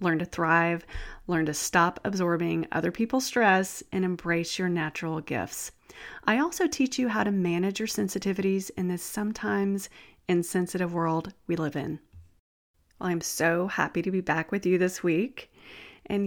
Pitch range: 170-235 Hz